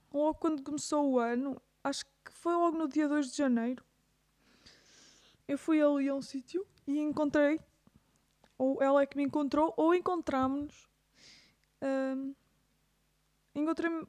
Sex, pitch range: female, 275-330 Hz